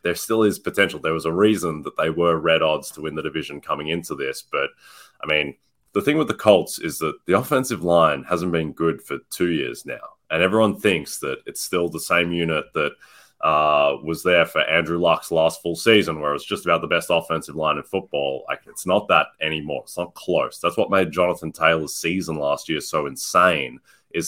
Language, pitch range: English, 80-95 Hz